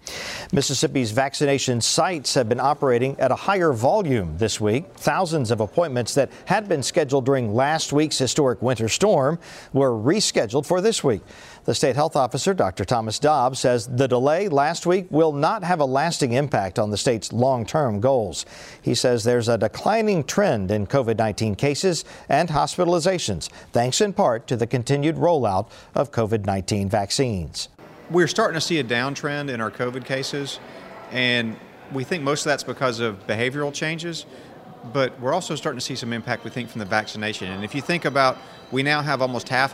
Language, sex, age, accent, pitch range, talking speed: English, male, 50-69, American, 120-145 Hz, 175 wpm